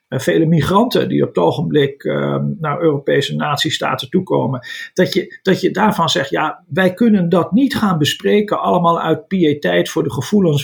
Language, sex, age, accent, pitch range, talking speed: Dutch, male, 50-69, Dutch, 145-210 Hz, 170 wpm